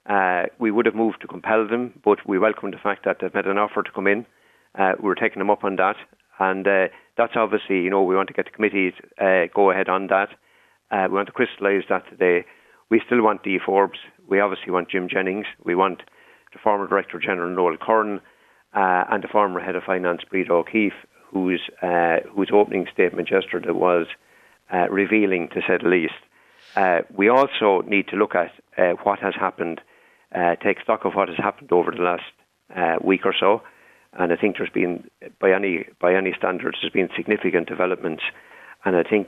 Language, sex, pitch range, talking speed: English, male, 90-105 Hz, 205 wpm